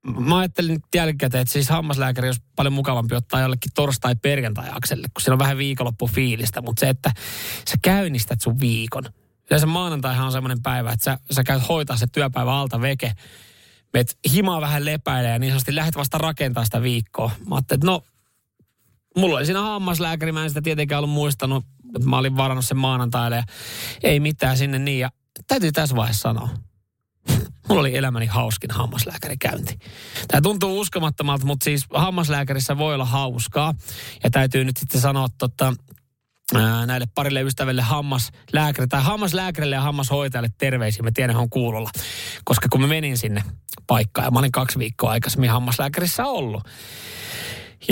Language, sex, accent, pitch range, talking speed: Finnish, male, native, 120-145 Hz, 160 wpm